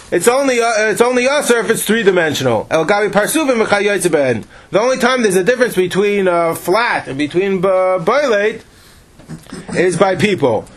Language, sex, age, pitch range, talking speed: English, male, 40-59, 175-225 Hz, 160 wpm